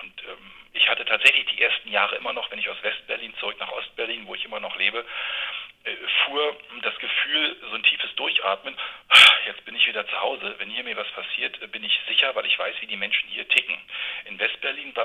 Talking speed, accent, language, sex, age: 220 wpm, German, German, male, 40-59